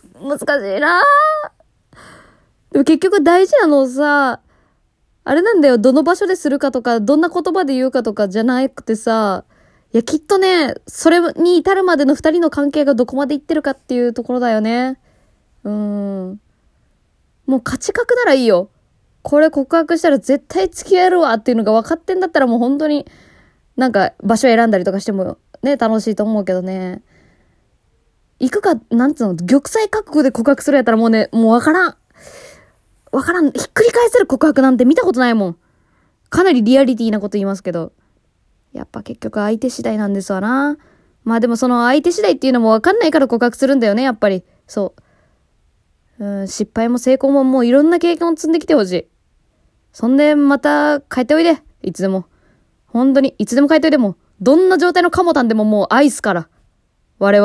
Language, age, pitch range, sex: Japanese, 20-39, 225-315 Hz, female